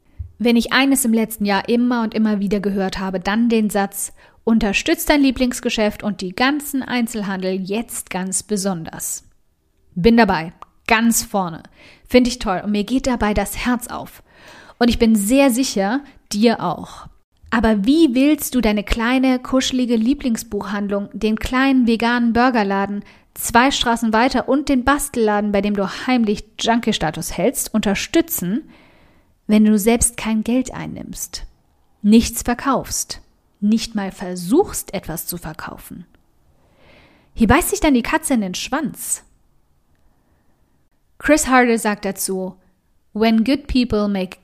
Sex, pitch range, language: female, 200-245 Hz, German